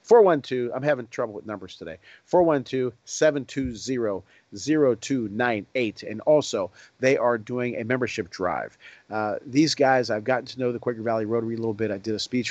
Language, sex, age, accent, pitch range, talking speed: English, male, 40-59, American, 110-130 Hz, 165 wpm